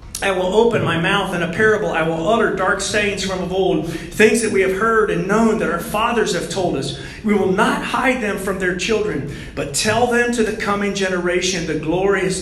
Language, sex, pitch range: English, male, 165-220 Hz